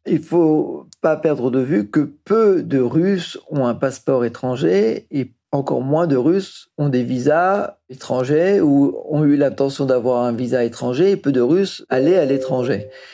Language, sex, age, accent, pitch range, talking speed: French, male, 50-69, French, 130-155 Hz, 175 wpm